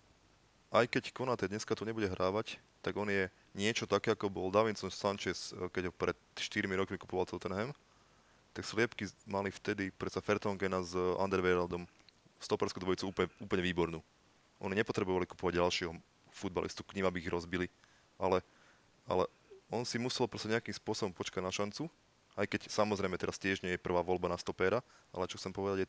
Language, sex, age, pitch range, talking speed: Slovak, male, 20-39, 90-105 Hz, 170 wpm